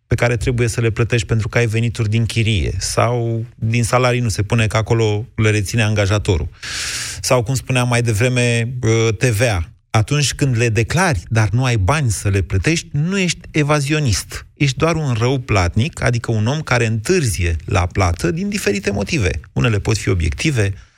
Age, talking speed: 30-49, 175 wpm